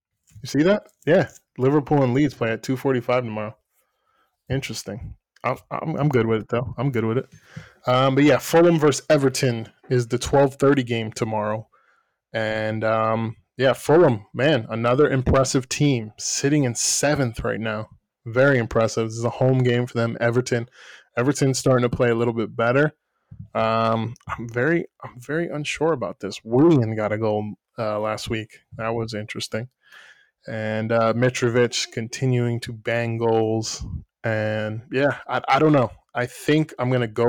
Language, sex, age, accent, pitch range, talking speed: English, male, 20-39, American, 110-135 Hz, 165 wpm